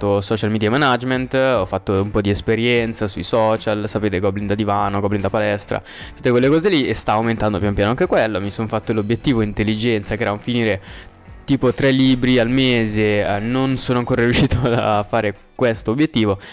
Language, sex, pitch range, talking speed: Italian, male, 100-120 Hz, 190 wpm